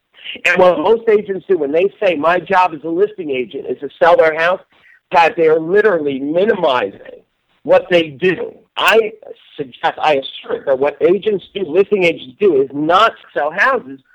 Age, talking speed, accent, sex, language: 50-69, 180 wpm, American, male, English